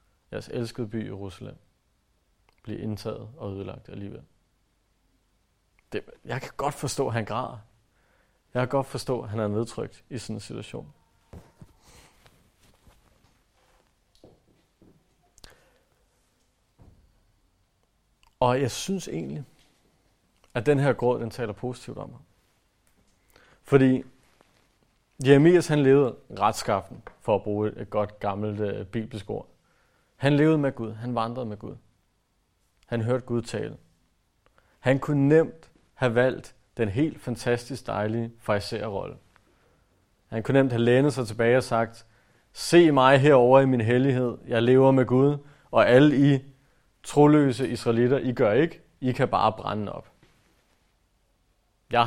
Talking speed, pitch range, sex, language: 125 wpm, 105-130 Hz, male, Danish